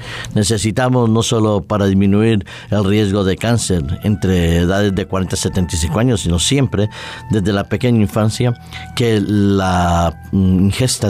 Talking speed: 135 wpm